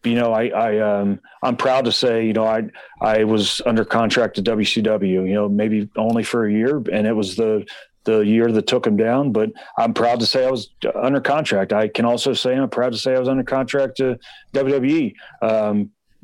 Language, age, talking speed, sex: English, 40-59, 220 wpm, male